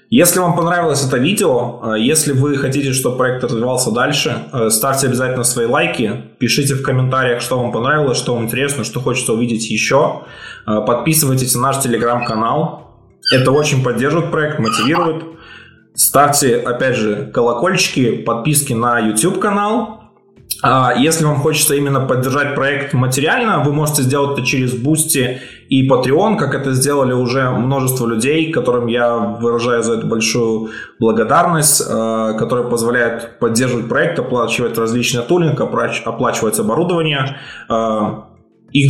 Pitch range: 120-140 Hz